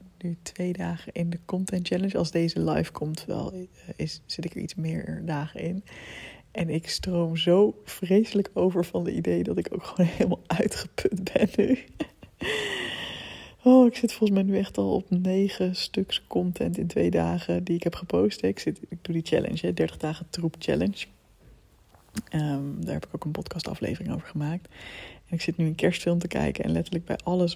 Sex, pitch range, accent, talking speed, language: female, 155-185 Hz, Dutch, 190 wpm, Dutch